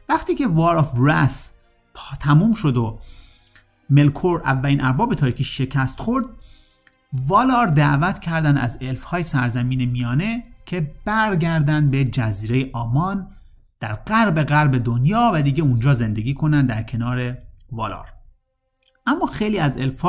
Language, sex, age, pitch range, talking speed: Persian, male, 30-49, 125-170 Hz, 130 wpm